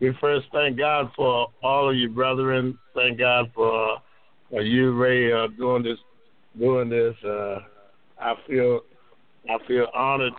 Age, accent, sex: 50-69, American, male